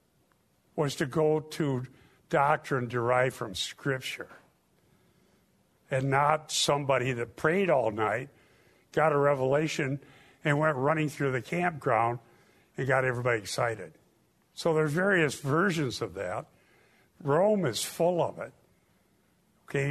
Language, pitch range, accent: English, 130-175 Hz, American